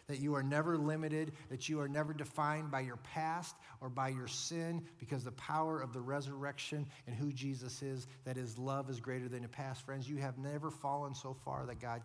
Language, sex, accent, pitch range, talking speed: English, male, American, 130-155 Hz, 220 wpm